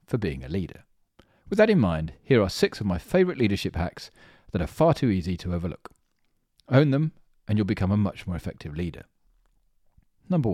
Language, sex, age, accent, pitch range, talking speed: English, male, 40-59, British, 95-145 Hz, 195 wpm